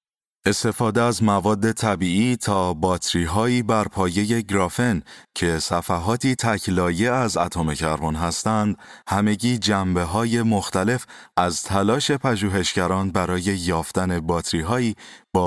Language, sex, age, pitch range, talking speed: Persian, male, 30-49, 85-110 Hz, 115 wpm